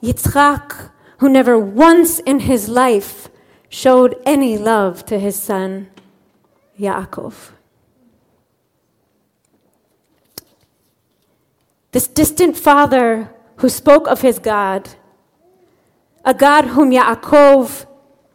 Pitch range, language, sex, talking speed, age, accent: 220-290 Hz, English, female, 85 wpm, 30-49, American